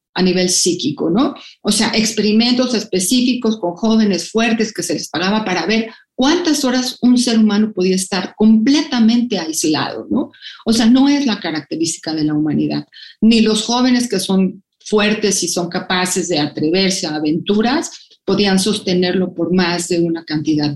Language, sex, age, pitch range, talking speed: Spanish, female, 40-59, 175-220 Hz, 160 wpm